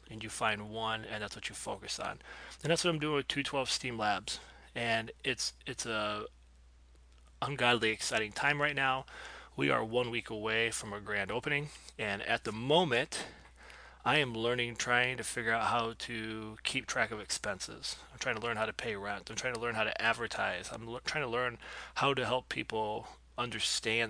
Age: 30-49